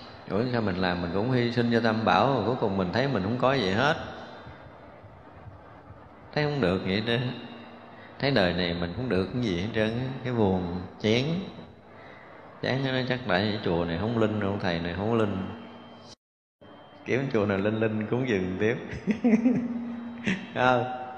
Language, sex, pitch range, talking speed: Vietnamese, male, 105-130 Hz, 180 wpm